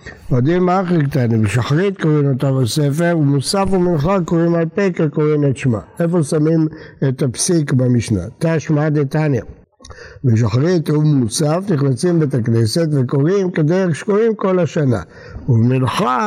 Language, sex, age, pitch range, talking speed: Hebrew, male, 60-79, 130-170 Hz, 120 wpm